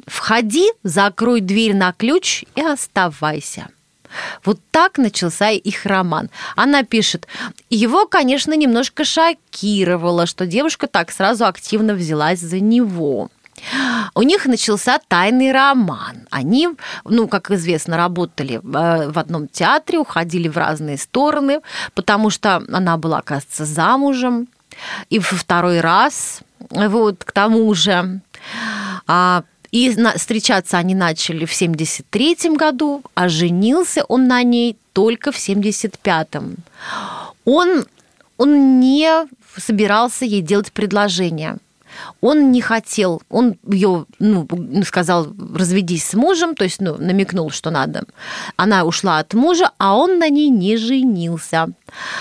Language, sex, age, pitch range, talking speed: Russian, female, 30-49, 180-250 Hz, 120 wpm